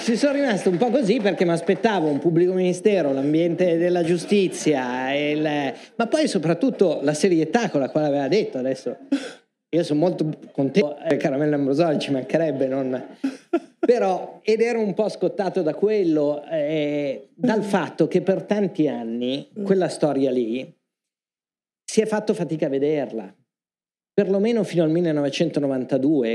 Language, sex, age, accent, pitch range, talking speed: Italian, male, 40-59, native, 125-180 Hz, 150 wpm